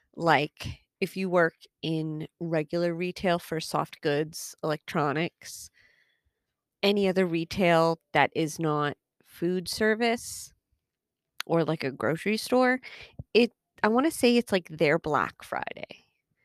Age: 30-49